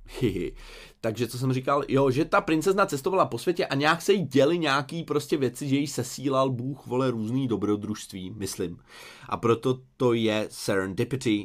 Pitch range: 105-150 Hz